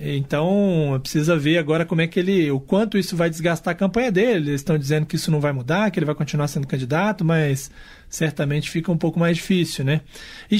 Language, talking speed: Portuguese, 220 wpm